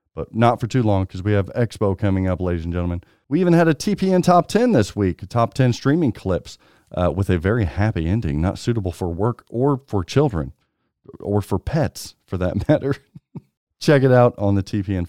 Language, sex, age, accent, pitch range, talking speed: English, male, 40-59, American, 95-130 Hz, 205 wpm